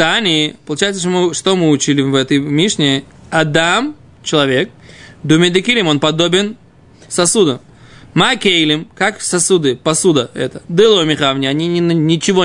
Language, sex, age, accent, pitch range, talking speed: Russian, male, 20-39, native, 150-210 Hz, 120 wpm